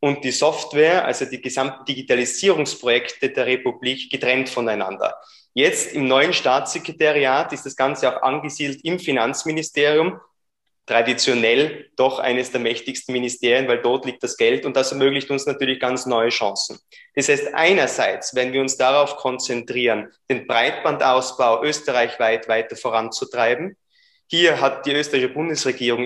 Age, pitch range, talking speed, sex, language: 20-39, 125-150 Hz, 135 wpm, male, German